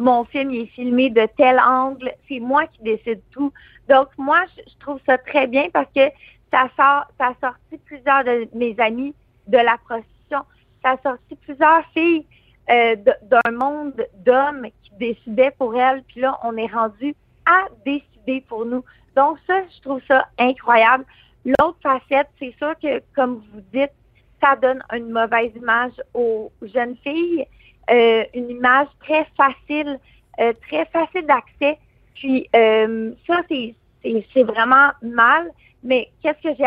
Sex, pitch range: female, 235-290 Hz